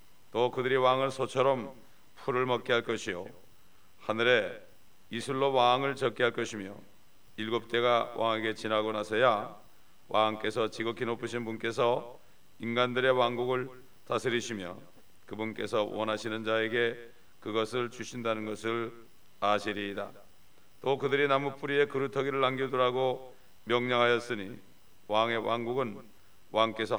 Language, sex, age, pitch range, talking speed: English, male, 40-59, 105-125 Hz, 95 wpm